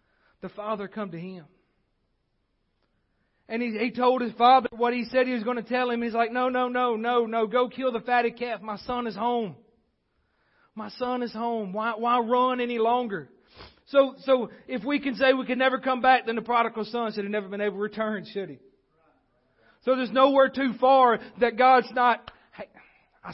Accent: American